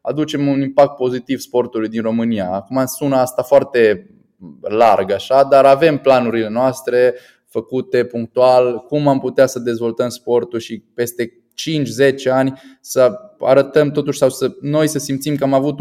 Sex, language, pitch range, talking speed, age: male, Romanian, 110-130 Hz, 150 wpm, 20-39